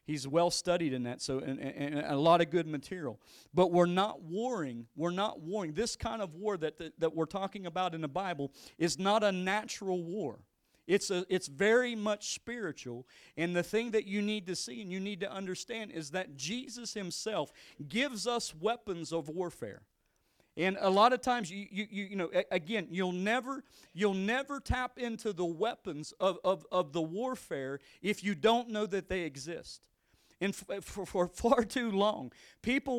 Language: English